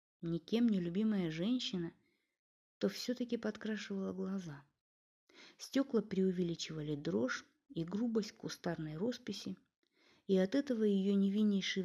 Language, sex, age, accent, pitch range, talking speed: Russian, female, 30-49, native, 170-220 Hz, 100 wpm